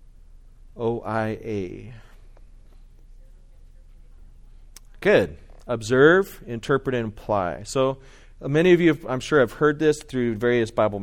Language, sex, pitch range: English, male, 110-130 Hz